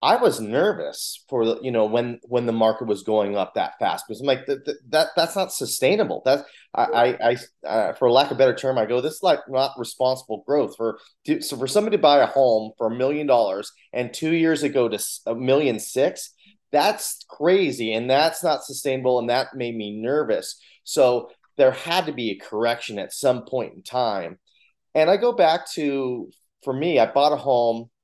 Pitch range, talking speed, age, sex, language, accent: 120-160 Hz, 210 wpm, 30-49, male, English, American